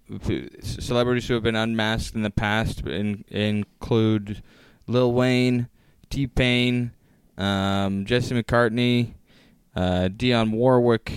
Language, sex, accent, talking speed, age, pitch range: English, male, American, 90 wpm, 20-39, 95-120 Hz